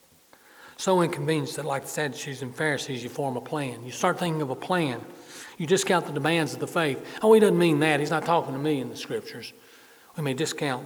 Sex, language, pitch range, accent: male, English, 130-175 Hz, American